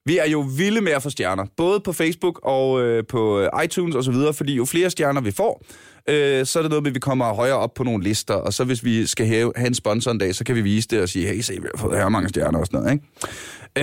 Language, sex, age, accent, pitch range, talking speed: Danish, male, 20-39, native, 115-160 Hz, 295 wpm